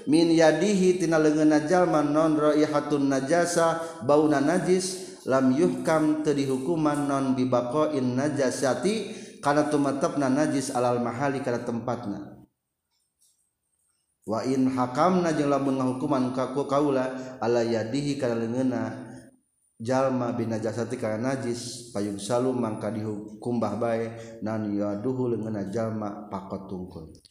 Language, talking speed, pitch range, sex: Indonesian, 105 wpm, 110-150 Hz, male